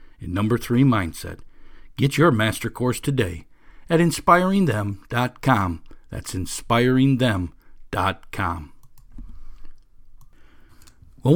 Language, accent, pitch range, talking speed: English, American, 115-165 Hz, 75 wpm